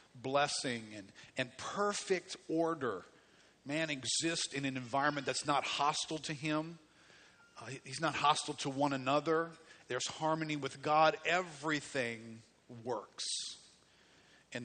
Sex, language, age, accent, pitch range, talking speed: male, English, 50-69, American, 125-155 Hz, 120 wpm